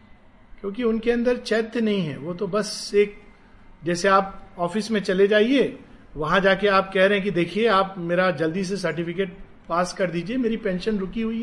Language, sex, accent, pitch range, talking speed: Hindi, male, native, 180-235 Hz, 190 wpm